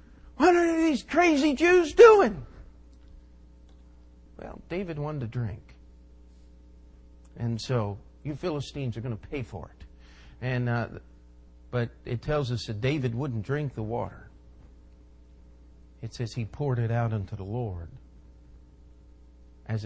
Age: 50-69